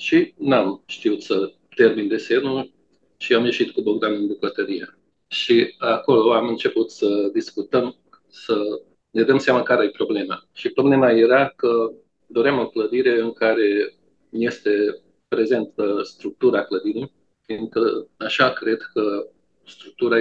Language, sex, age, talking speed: Romanian, male, 40-59, 130 wpm